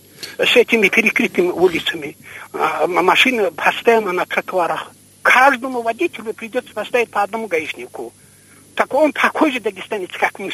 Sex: male